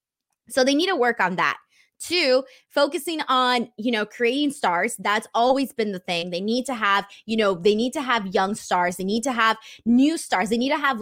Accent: American